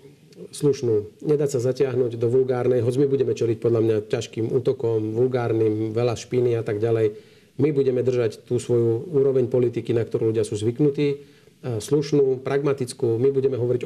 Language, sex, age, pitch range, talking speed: Slovak, male, 40-59, 115-135 Hz, 160 wpm